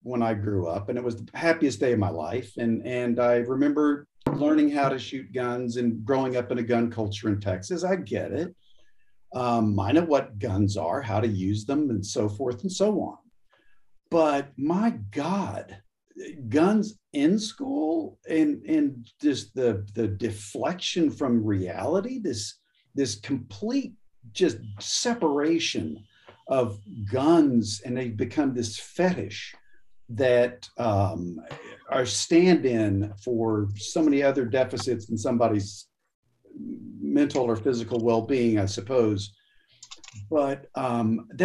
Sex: male